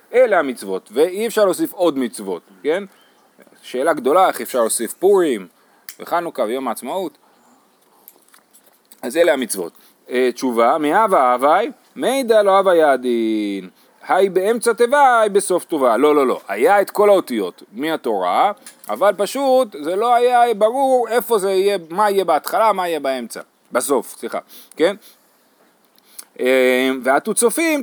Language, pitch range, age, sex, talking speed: Hebrew, 130-210 Hz, 30-49, male, 130 wpm